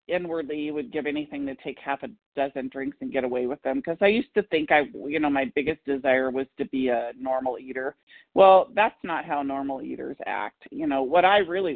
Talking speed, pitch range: 230 wpm, 135-160 Hz